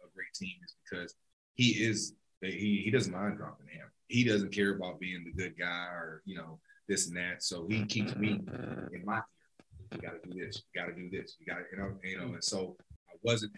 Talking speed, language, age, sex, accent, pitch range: 225 wpm, English, 30-49, male, American, 90-105 Hz